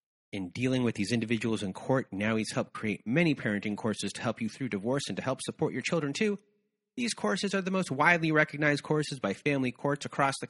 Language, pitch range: English, 135-195 Hz